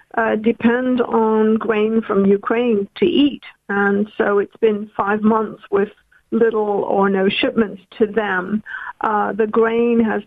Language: English